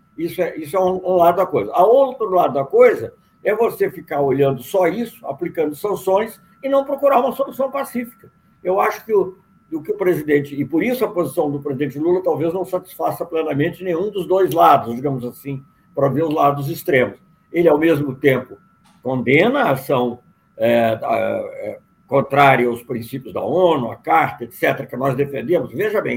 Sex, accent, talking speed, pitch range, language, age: male, Brazilian, 180 wpm, 140-225 Hz, Portuguese, 60-79